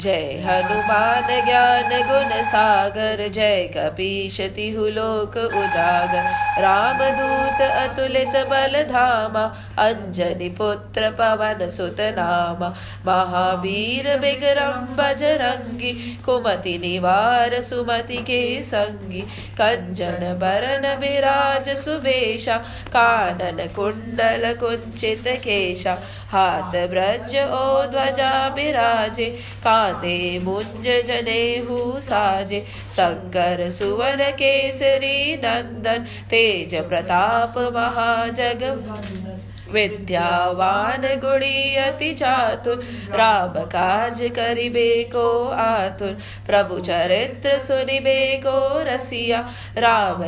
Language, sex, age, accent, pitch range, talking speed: English, female, 20-39, Indian, 190-265 Hz, 70 wpm